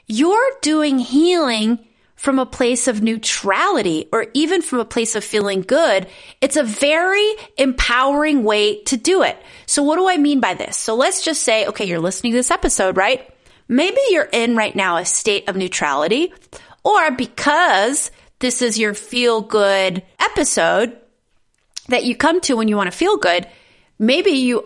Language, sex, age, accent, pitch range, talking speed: English, female, 30-49, American, 200-280 Hz, 175 wpm